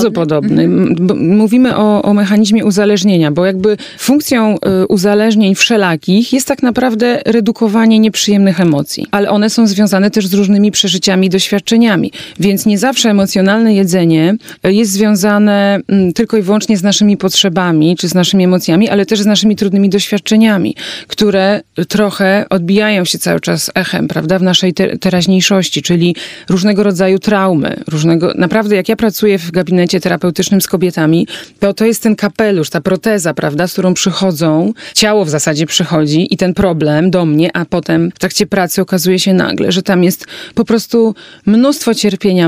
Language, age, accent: Polish, 30-49, native